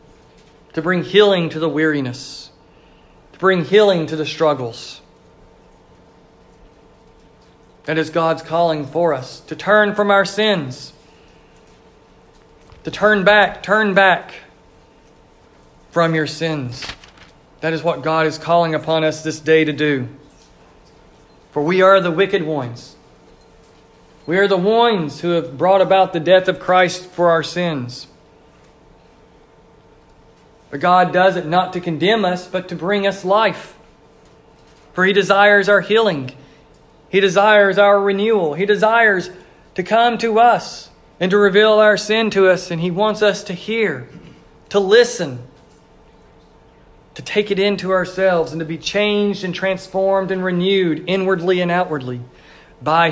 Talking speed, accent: 140 wpm, American